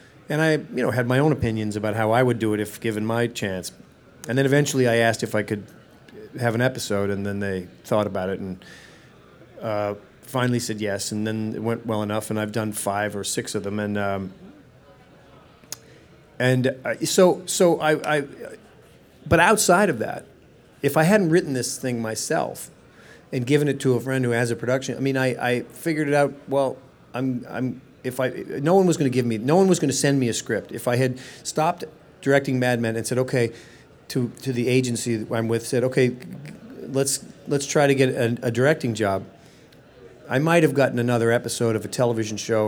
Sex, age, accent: male, 40-59, American